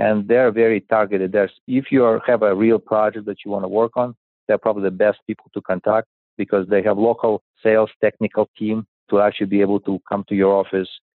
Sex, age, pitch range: male, 40-59, 100-110 Hz